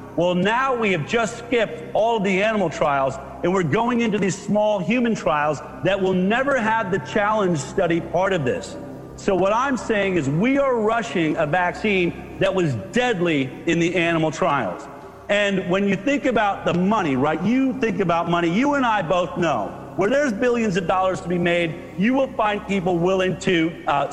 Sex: male